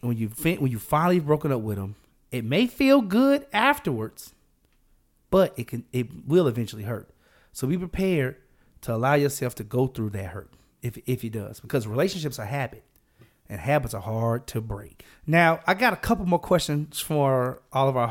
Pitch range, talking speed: 120-180 Hz, 190 wpm